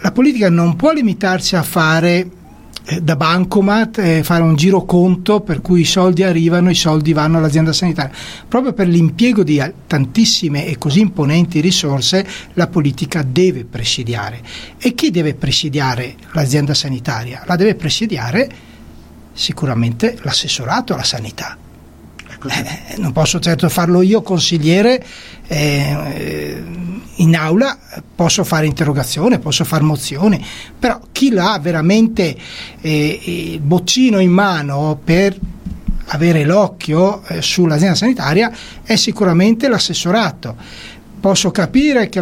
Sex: male